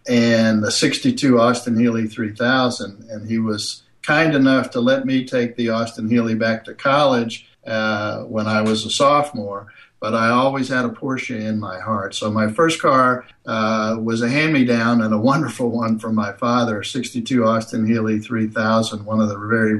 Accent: American